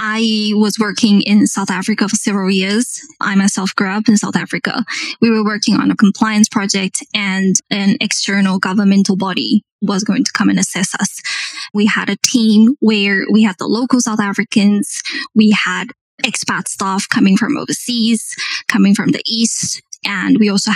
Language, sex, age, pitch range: English, female, 10-29, 205-235 Hz